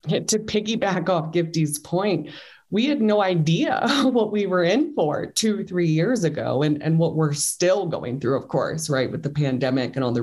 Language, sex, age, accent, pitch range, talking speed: English, female, 20-39, American, 140-175 Hz, 200 wpm